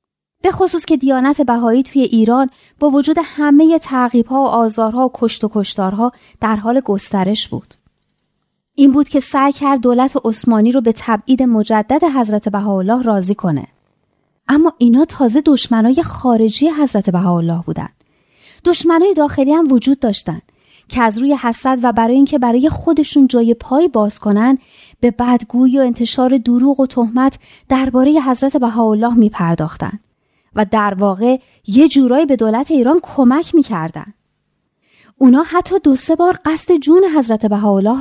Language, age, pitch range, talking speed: Persian, 30-49, 225-285 Hz, 145 wpm